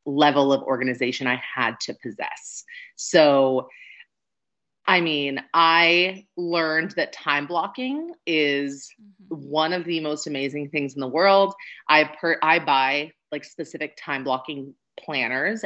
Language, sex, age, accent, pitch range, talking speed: English, female, 30-49, American, 140-165 Hz, 130 wpm